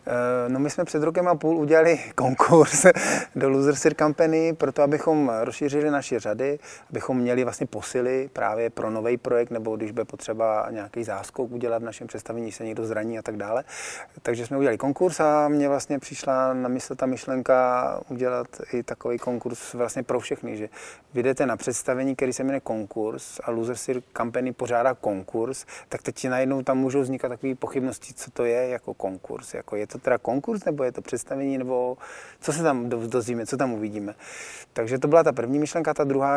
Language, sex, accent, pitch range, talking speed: Czech, male, native, 115-135 Hz, 185 wpm